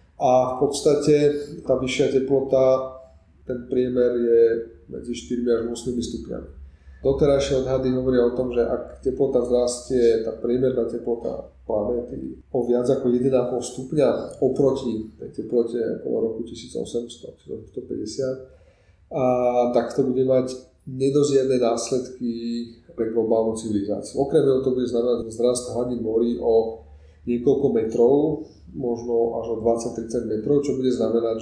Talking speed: 125 wpm